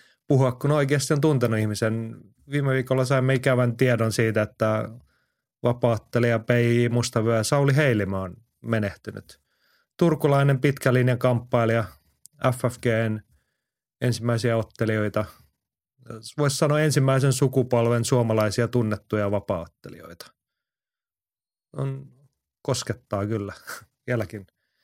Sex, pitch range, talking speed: male, 115-140 Hz, 90 wpm